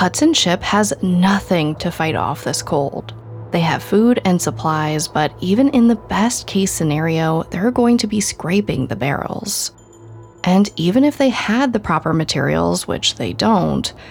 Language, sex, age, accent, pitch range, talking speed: English, female, 20-39, American, 140-205 Hz, 165 wpm